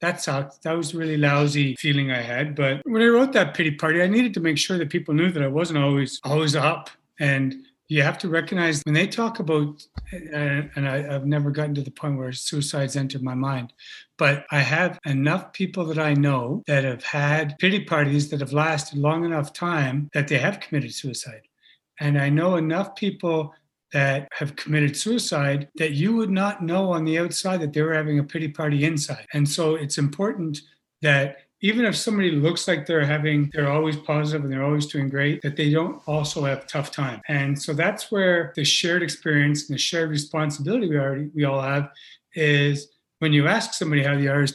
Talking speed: 205 wpm